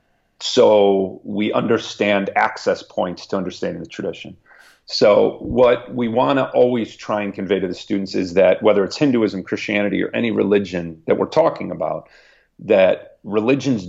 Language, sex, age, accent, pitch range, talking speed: English, male, 40-59, American, 100-115 Hz, 155 wpm